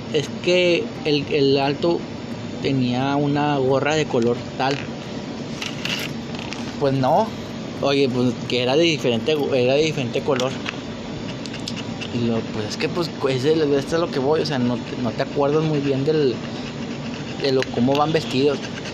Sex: male